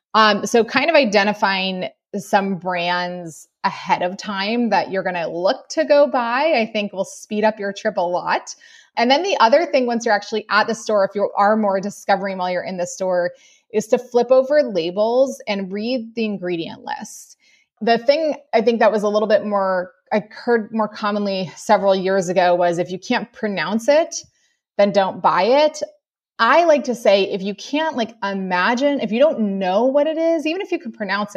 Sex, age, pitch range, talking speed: female, 20-39, 200-270 Hz, 205 wpm